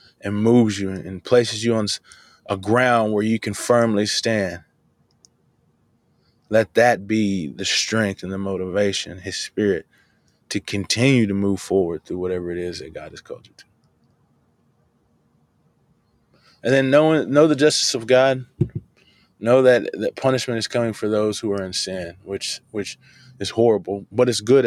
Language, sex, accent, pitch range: English, male, American, 100-120 Hz